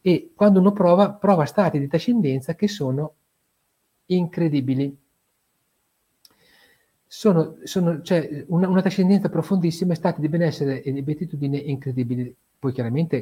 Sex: male